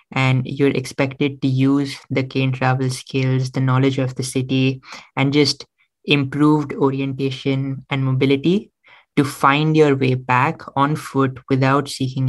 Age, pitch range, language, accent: 20-39, 130-140 Hz, English, Indian